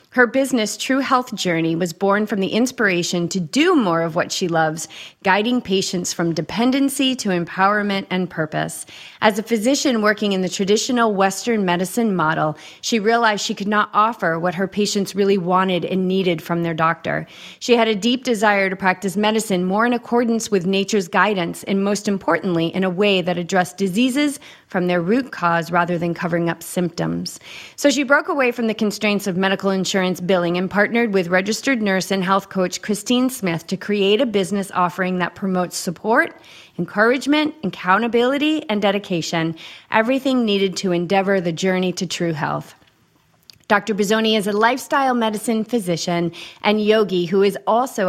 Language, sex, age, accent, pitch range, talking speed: English, female, 30-49, American, 180-225 Hz, 170 wpm